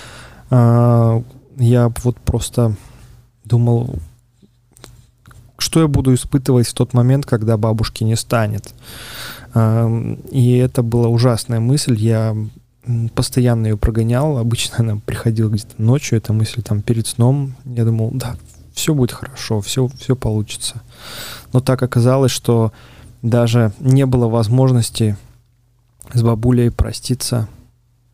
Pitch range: 115-125 Hz